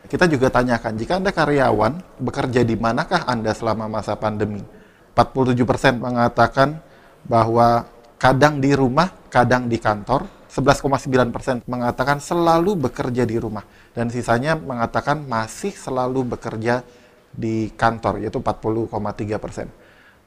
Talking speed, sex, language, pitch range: 115 wpm, male, Indonesian, 115-140 Hz